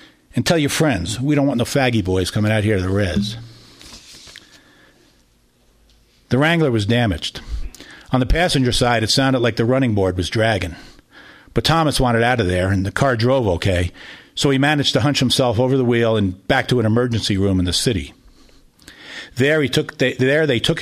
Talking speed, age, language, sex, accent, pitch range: 195 wpm, 50-69, English, male, American, 105-135 Hz